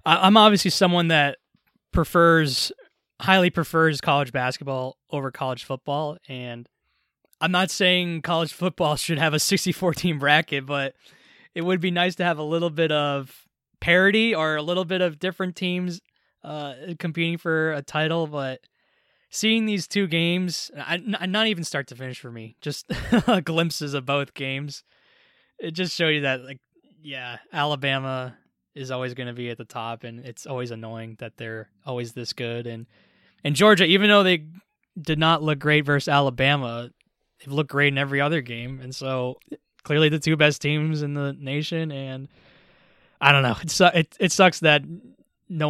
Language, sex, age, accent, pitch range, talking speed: English, male, 20-39, American, 135-180 Hz, 175 wpm